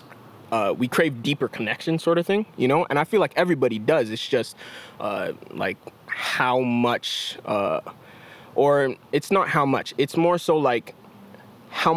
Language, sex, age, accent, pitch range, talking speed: English, male, 20-39, American, 120-155 Hz, 165 wpm